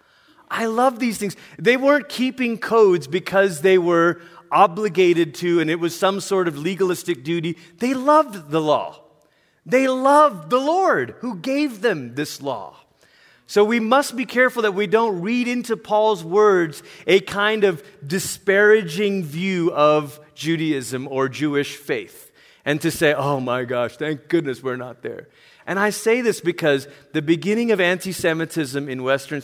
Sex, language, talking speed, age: male, English, 160 wpm, 30-49